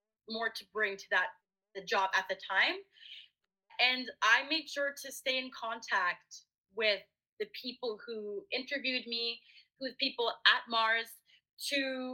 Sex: female